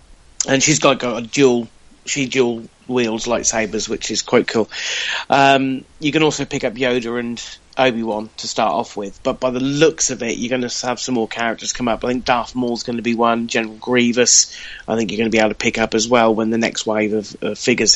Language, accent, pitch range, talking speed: English, British, 115-145 Hz, 235 wpm